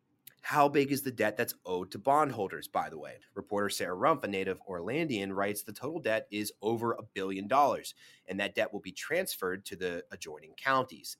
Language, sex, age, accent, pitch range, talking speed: English, male, 30-49, American, 100-130 Hz, 200 wpm